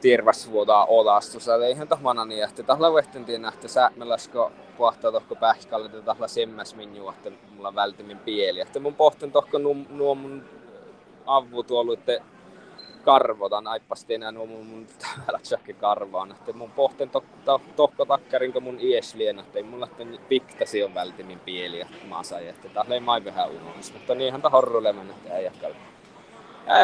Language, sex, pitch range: Finnish, male, 115-150 Hz